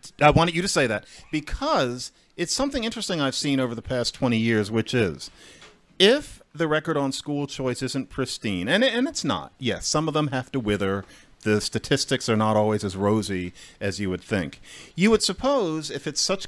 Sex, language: male, English